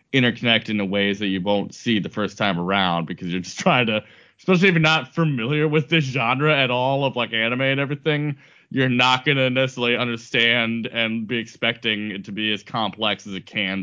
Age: 20-39